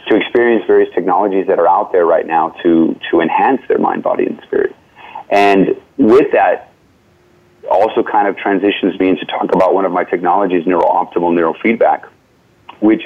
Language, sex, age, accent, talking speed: English, male, 30-49, American, 165 wpm